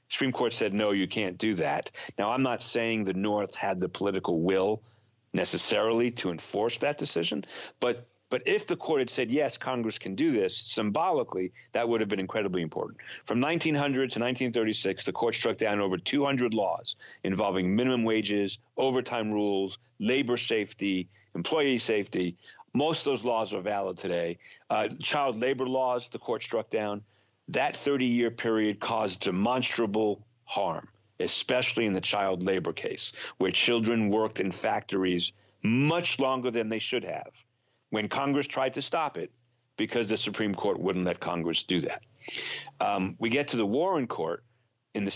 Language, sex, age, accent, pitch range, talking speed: English, male, 40-59, American, 100-125 Hz, 165 wpm